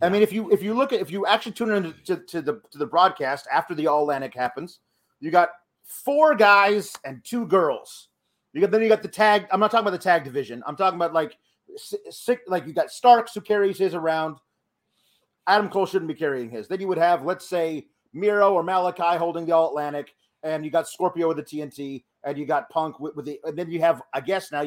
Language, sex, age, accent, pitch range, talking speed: English, male, 40-59, American, 155-205 Hz, 240 wpm